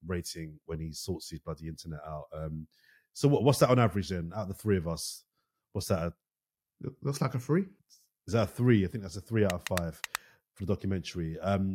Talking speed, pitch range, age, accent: 225 wpm, 90-130 Hz, 30-49, British